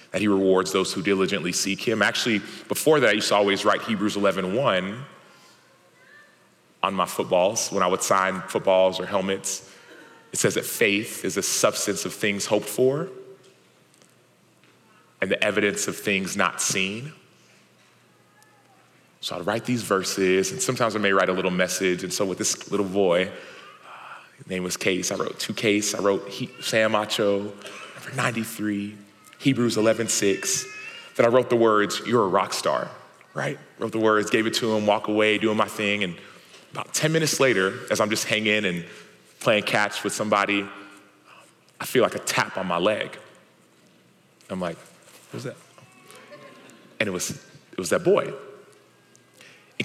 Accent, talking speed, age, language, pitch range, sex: American, 170 wpm, 30-49, English, 100-115 Hz, male